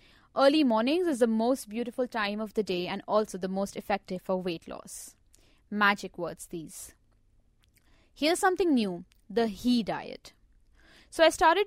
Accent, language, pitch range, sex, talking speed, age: Indian, English, 200-295 Hz, female, 155 wpm, 20-39